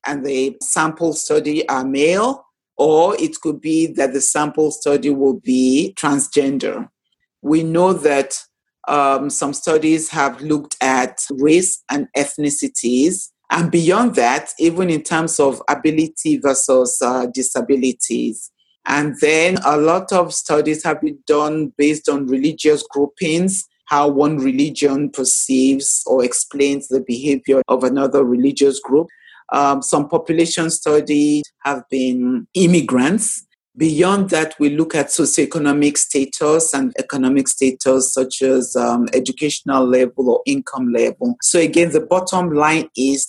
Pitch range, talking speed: 135-165 Hz, 135 wpm